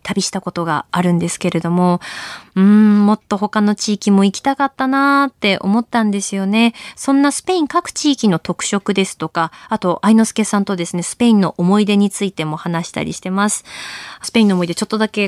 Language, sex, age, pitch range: Japanese, female, 20-39, 180-230 Hz